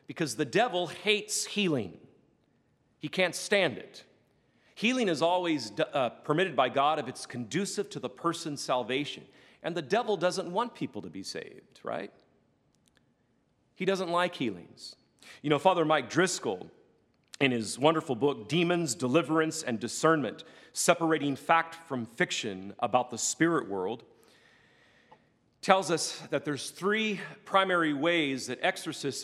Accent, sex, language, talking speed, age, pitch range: American, male, English, 140 wpm, 40-59, 130-175 Hz